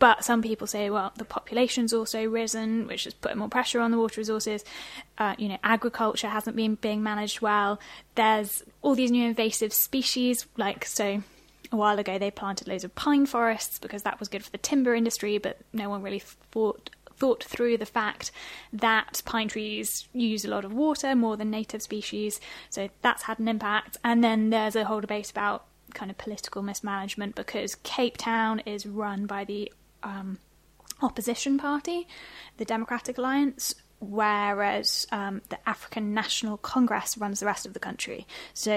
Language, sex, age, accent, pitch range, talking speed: English, female, 10-29, British, 205-235 Hz, 180 wpm